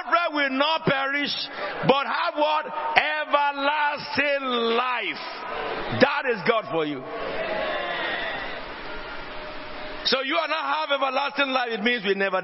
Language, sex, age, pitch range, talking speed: English, male, 60-79, 180-295 Hz, 115 wpm